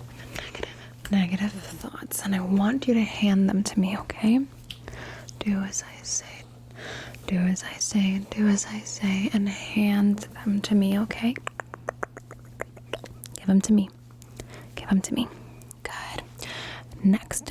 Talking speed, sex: 135 wpm, female